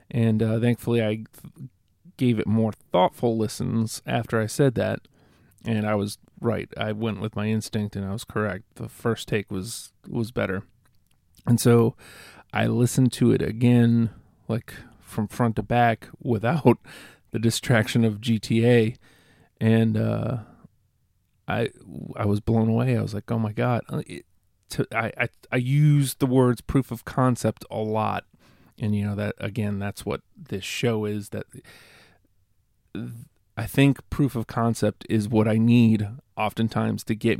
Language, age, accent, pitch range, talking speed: English, 40-59, American, 105-120 Hz, 160 wpm